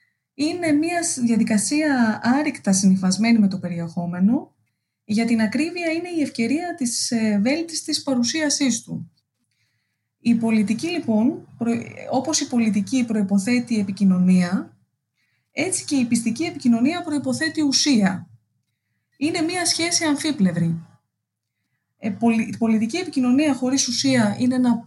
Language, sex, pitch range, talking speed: English, female, 205-295 Hz, 110 wpm